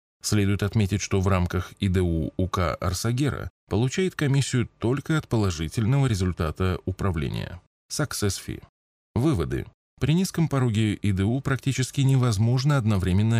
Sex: male